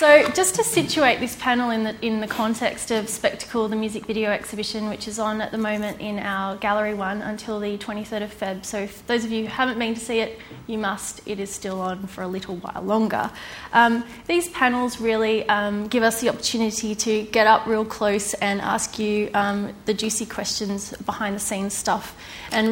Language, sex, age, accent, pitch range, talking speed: English, female, 20-39, Australian, 210-235 Hz, 205 wpm